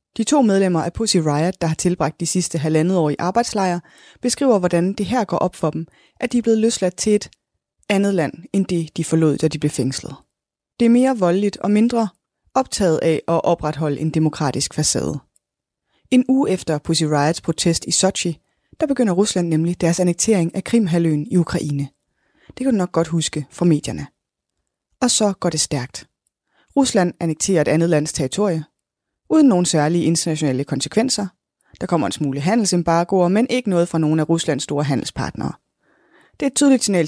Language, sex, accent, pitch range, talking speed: Danish, female, native, 155-205 Hz, 185 wpm